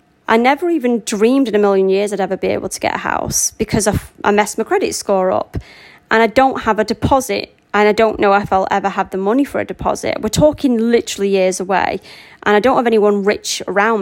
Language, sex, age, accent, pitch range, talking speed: English, female, 30-49, British, 200-240 Hz, 240 wpm